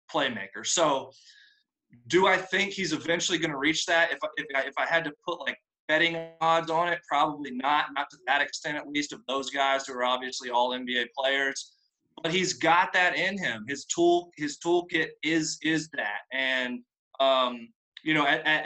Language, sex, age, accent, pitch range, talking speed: English, male, 20-39, American, 130-160 Hz, 190 wpm